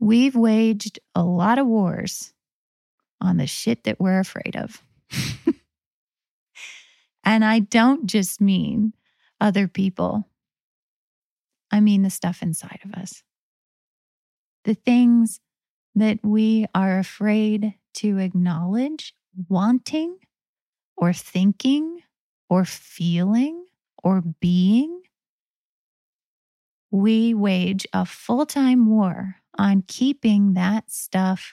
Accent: American